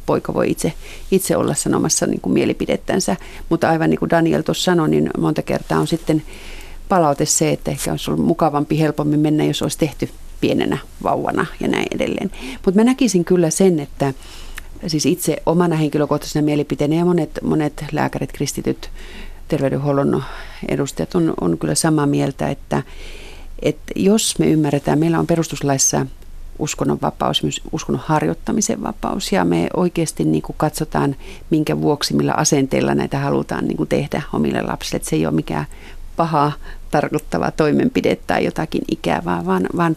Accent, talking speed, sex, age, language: native, 150 wpm, female, 40-59, Finnish